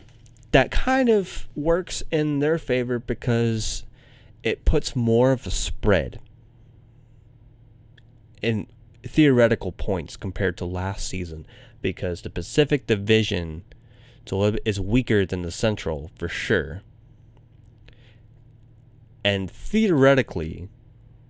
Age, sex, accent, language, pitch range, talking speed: 20-39, male, American, English, 95-120 Hz, 95 wpm